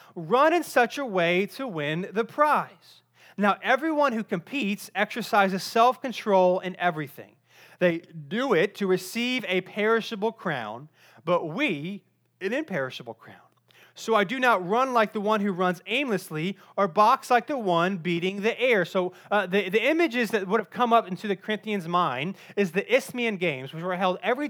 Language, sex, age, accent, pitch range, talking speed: English, male, 30-49, American, 185-225 Hz, 175 wpm